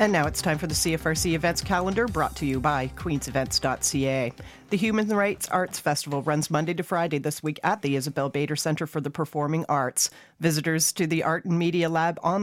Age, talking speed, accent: 40-59, 205 wpm, American